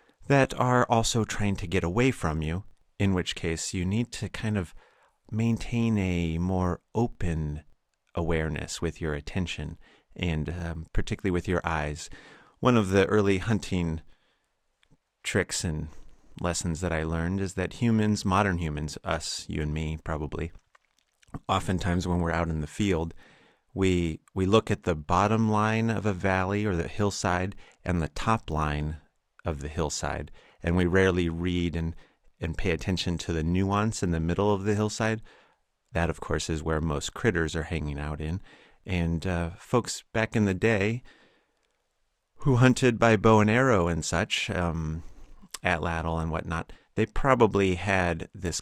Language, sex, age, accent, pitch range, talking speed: English, male, 40-59, American, 80-100 Hz, 160 wpm